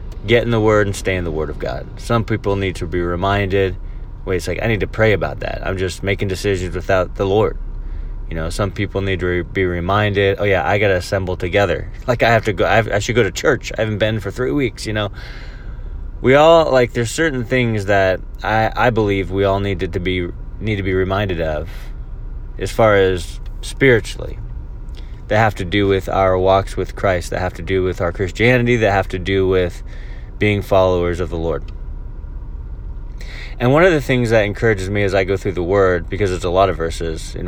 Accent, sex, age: American, male, 20-39